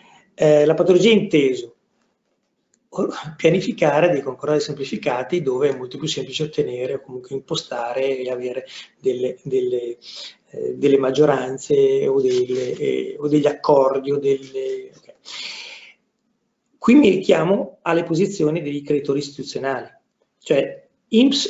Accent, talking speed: native, 125 wpm